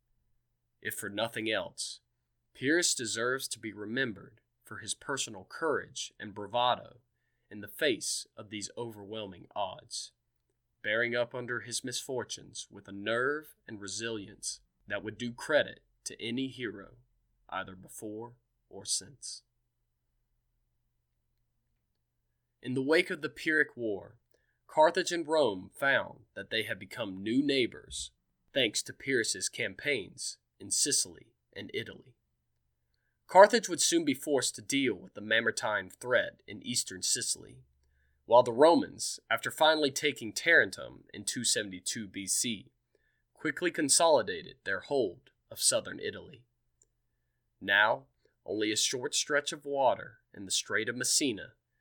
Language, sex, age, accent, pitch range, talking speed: English, male, 20-39, American, 100-125 Hz, 130 wpm